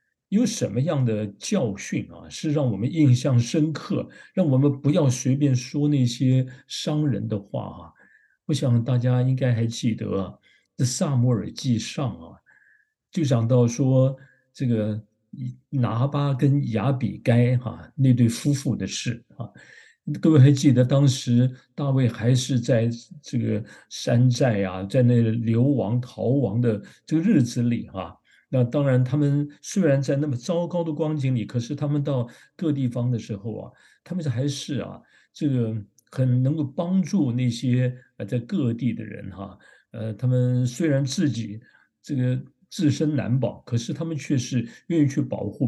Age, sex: 50-69, male